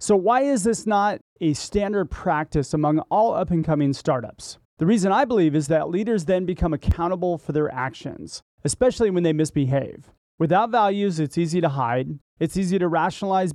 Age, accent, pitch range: 30-49, American, 150-190 Hz